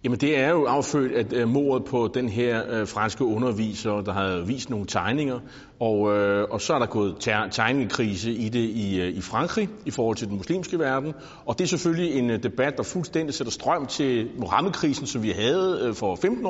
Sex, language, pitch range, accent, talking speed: male, Danish, 110-155 Hz, native, 190 wpm